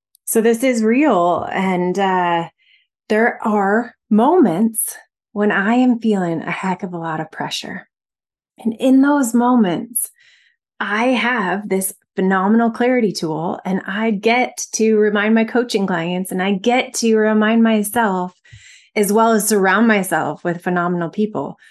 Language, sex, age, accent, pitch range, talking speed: English, female, 20-39, American, 180-230 Hz, 145 wpm